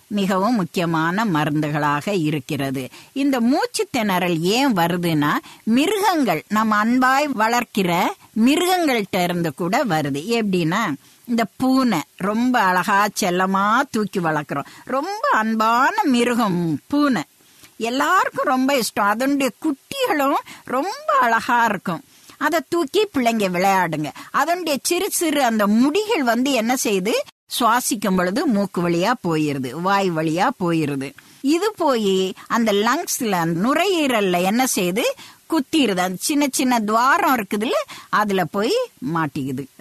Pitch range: 180-270 Hz